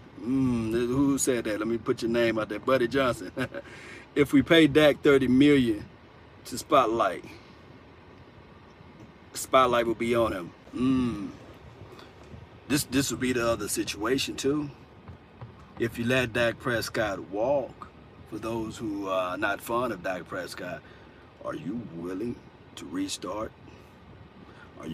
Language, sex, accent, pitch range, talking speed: English, male, American, 110-130 Hz, 135 wpm